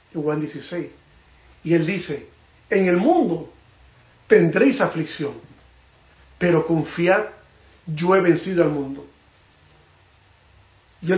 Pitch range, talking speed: 160-200 Hz, 95 wpm